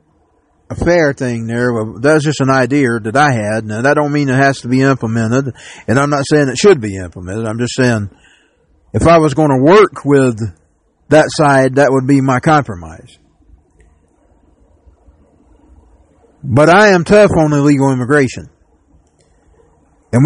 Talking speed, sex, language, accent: 155 wpm, male, English, American